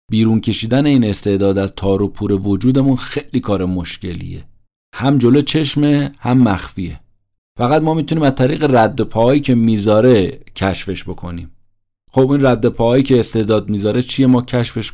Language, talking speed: Persian, 150 wpm